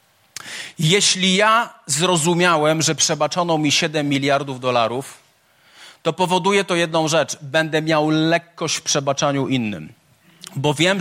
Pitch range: 160-240 Hz